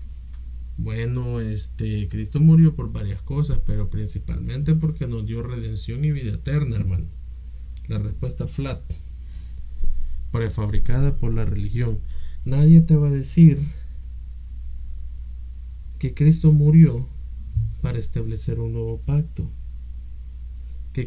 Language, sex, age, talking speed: Spanish, male, 50-69, 110 wpm